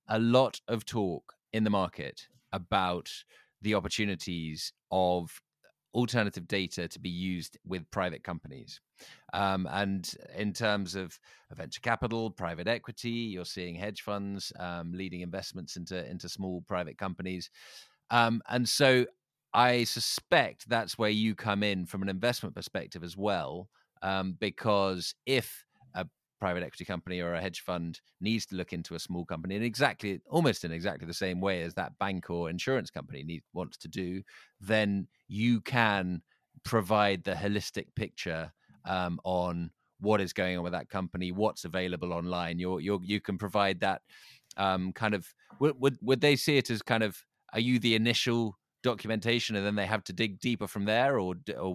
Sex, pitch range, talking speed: male, 90-110 Hz, 165 wpm